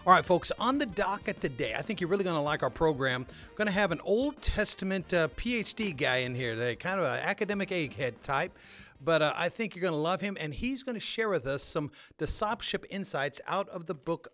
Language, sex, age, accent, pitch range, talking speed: English, male, 40-59, American, 140-190 Hz, 240 wpm